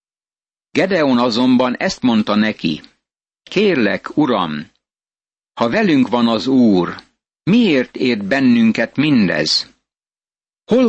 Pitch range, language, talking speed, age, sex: 115-155 Hz, Hungarian, 95 wpm, 60-79, male